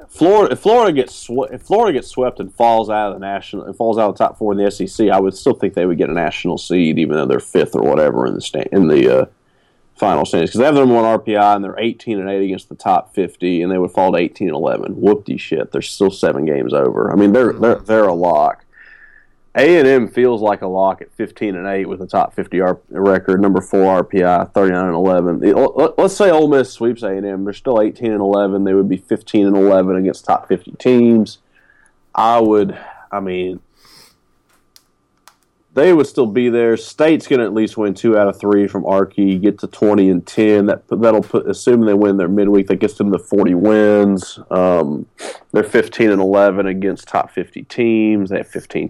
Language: English